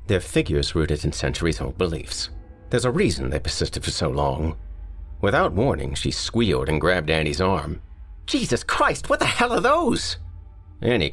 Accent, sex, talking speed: American, male, 160 wpm